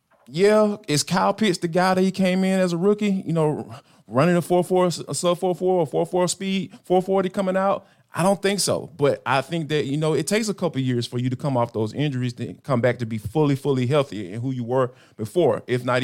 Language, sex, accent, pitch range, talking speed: English, male, American, 125-170 Hz, 260 wpm